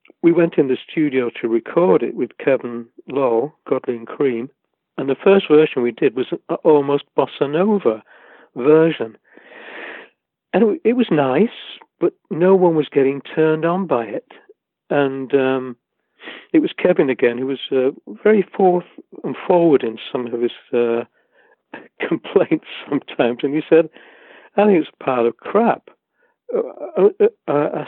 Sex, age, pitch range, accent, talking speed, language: male, 60-79, 145-225 Hz, British, 150 wpm, English